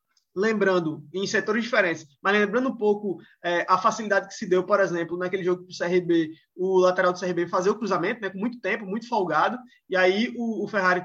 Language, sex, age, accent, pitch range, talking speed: Portuguese, male, 20-39, Brazilian, 190-245 Hz, 210 wpm